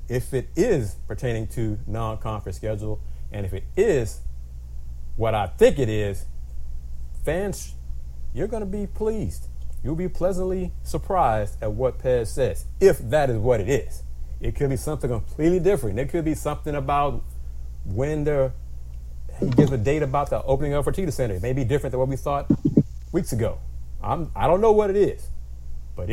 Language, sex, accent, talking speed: English, male, American, 175 wpm